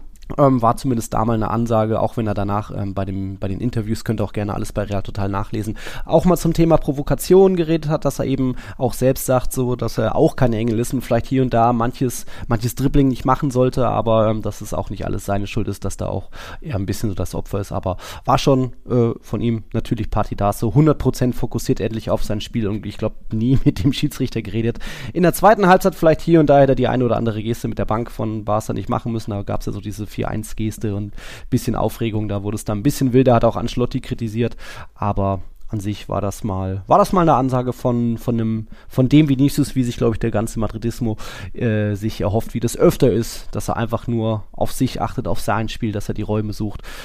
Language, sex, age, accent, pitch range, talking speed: German, male, 20-39, German, 105-130 Hz, 245 wpm